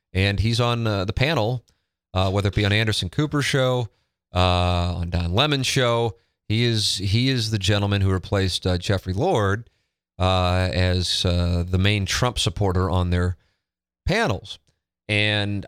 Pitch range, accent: 90-115 Hz, American